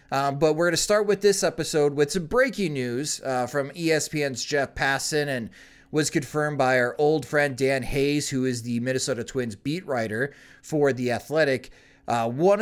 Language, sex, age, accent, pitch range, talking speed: English, male, 30-49, American, 125-165 Hz, 185 wpm